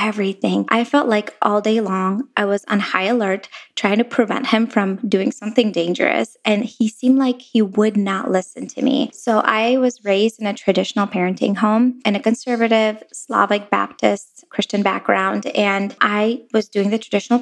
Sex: female